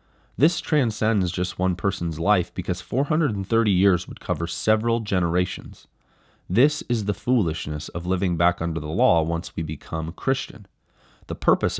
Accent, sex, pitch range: American, male, 85-110 Hz